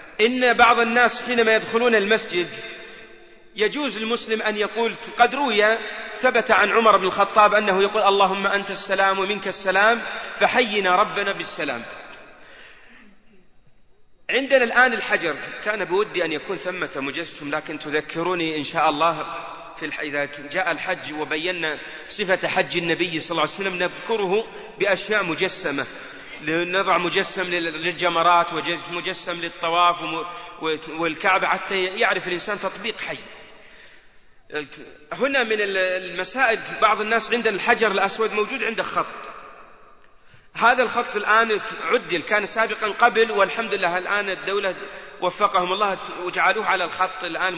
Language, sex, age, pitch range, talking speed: Arabic, male, 40-59, 175-230 Hz, 120 wpm